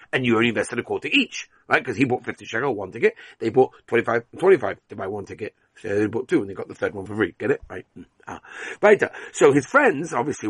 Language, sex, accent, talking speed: English, male, British, 250 wpm